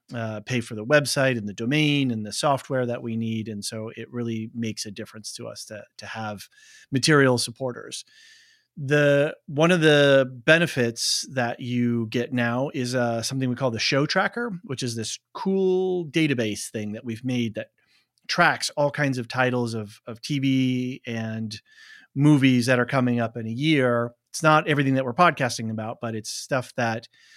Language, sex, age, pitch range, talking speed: English, male, 30-49, 120-150 Hz, 180 wpm